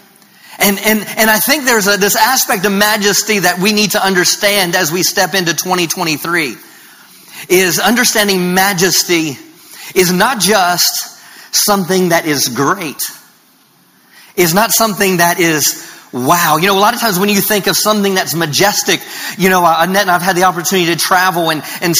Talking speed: 170 wpm